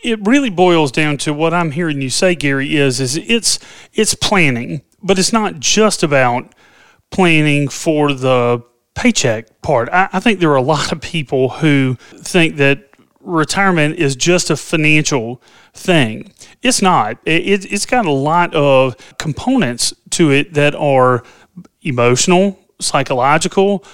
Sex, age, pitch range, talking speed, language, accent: male, 30-49, 135-180 Hz, 150 wpm, English, American